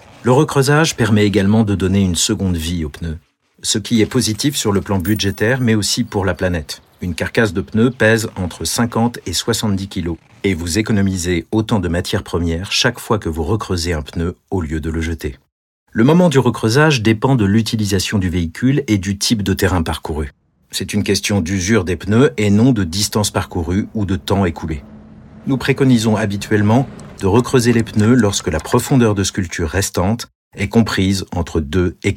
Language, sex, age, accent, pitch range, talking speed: French, male, 50-69, French, 95-120 Hz, 190 wpm